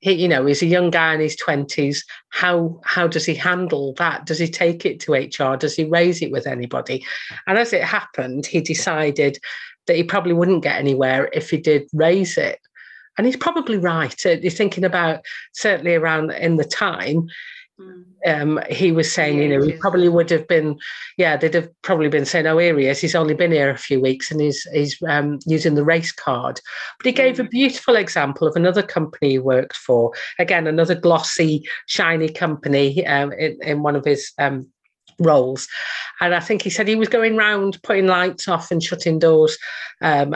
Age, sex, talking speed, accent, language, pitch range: 40-59, female, 200 wpm, British, English, 155-185 Hz